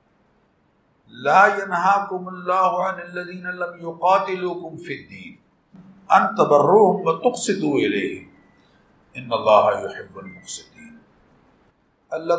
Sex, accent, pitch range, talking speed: male, Indian, 165-200 Hz, 90 wpm